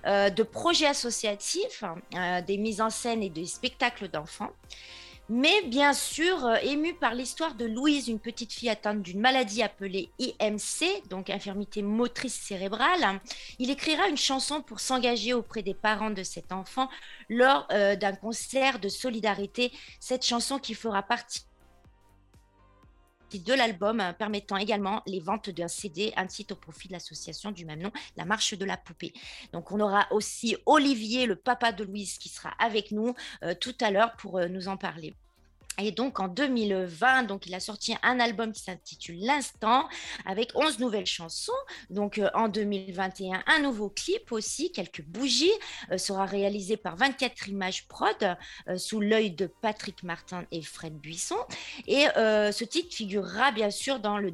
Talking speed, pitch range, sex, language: 170 wpm, 195-245 Hz, female, French